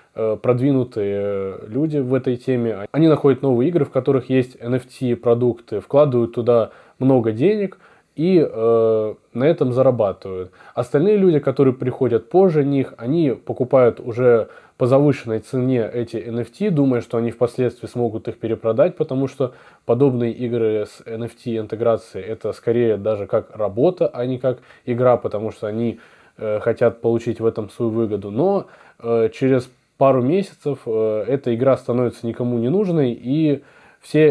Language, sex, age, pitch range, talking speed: Russian, male, 20-39, 115-130 Hz, 140 wpm